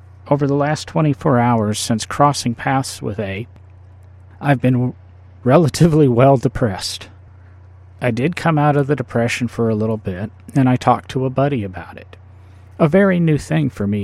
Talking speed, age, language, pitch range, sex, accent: 170 wpm, 40-59, English, 95-130 Hz, male, American